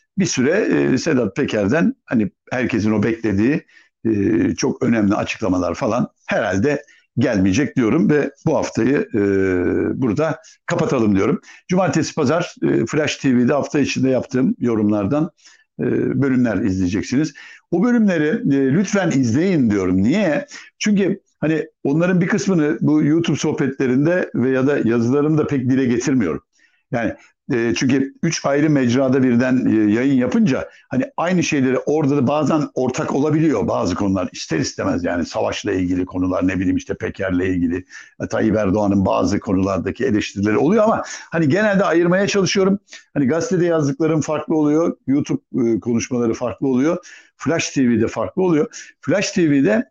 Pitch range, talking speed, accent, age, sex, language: 115-165 Hz, 135 wpm, native, 60-79, male, Turkish